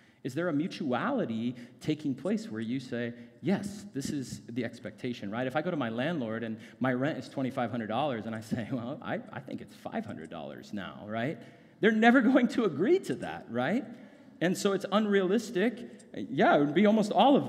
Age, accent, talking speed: 30-49, American, 190 wpm